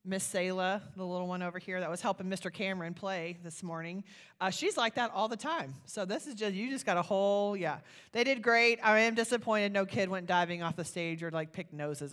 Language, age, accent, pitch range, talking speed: English, 30-49, American, 165-195 Hz, 240 wpm